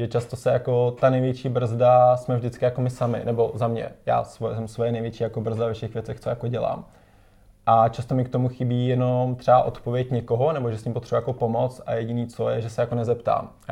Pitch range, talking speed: 115-125 Hz, 230 wpm